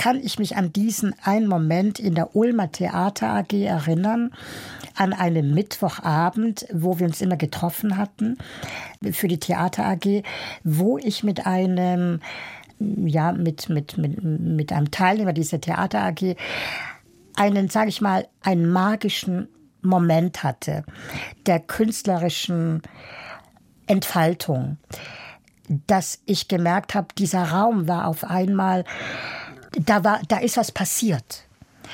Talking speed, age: 115 wpm, 60-79